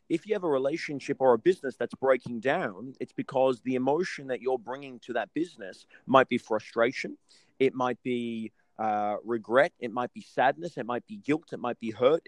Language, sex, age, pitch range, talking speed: English, male, 30-49, 115-140 Hz, 200 wpm